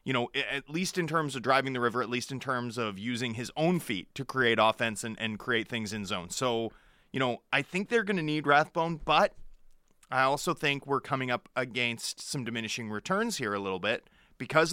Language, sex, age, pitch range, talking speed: English, male, 30-49, 110-140 Hz, 220 wpm